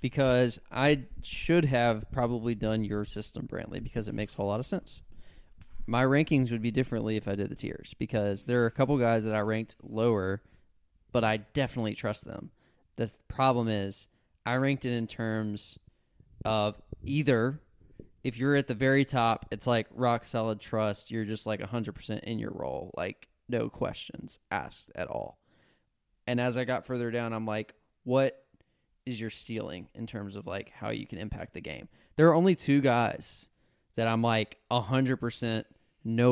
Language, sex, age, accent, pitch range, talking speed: English, male, 10-29, American, 105-125 Hz, 180 wpm